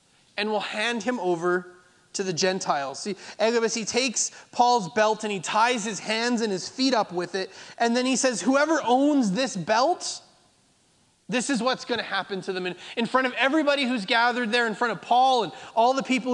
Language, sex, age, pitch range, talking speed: English, male, 20-39, 200-260 Hz, 210 wpm